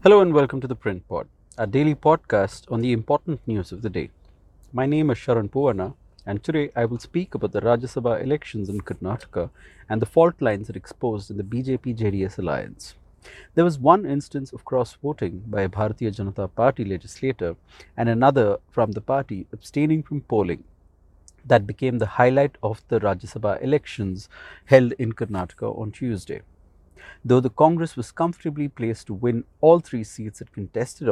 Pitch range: 100-135 Hz